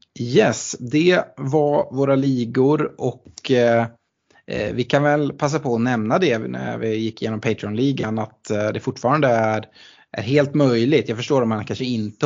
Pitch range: 110-130 Hz